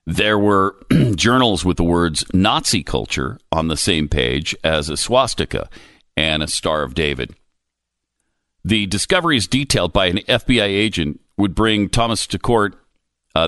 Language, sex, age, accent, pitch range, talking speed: English, male, 50-69, American, 80-120 Hz, 145 wpm